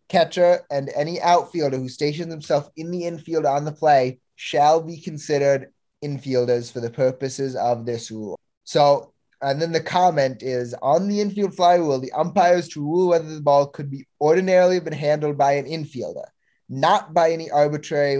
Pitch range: 130-160 Hz